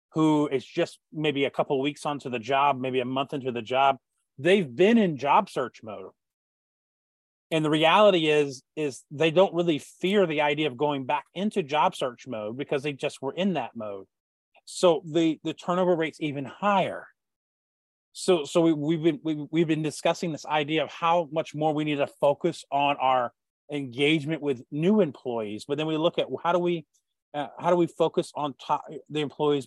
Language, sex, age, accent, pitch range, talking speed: English, male, 30-49, American, 135-165 Hz, 195 wpm